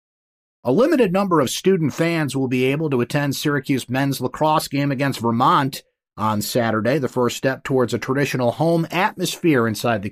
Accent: American